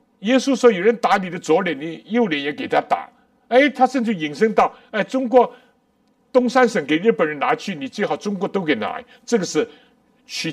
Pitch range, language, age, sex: 230-250 Hz, Chinese, 60-79, male